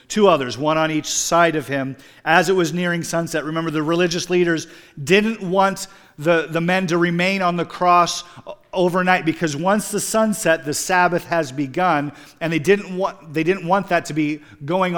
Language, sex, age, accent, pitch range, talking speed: English, male, 40-59, American, 130-175 Hz, 190 wpm